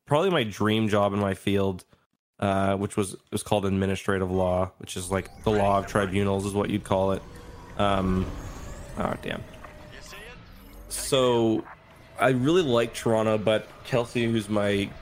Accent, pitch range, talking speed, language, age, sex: American, 95-110 Hz, 150 wpm, English, 20-39, male